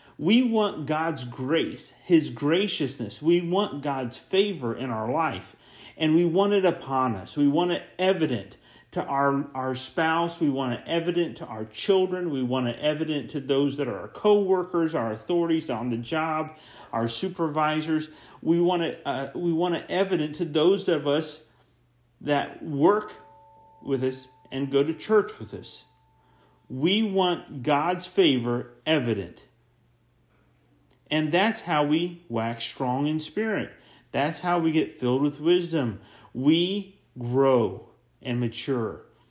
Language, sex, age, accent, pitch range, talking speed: English, male, 40-59, American, 120-165 Hz, 145 wpm